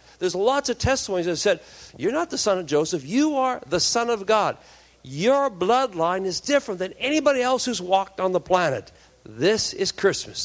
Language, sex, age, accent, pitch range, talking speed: English, male, 60-79, American, 145-220 Hz, 190 wpm